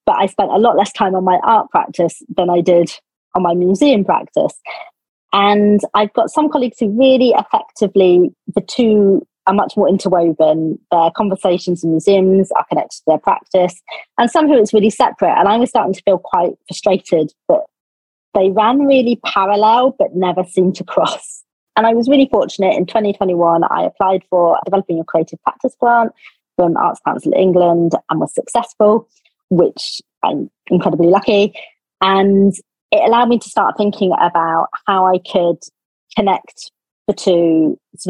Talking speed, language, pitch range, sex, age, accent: 170 wpm, English, 175-225 Hz, female, 30-49, British